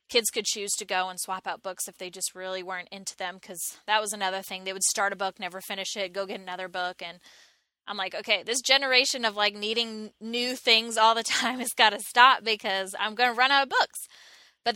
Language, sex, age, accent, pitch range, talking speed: English, female, 20-39, American, 190-235 Hz, 245 wpm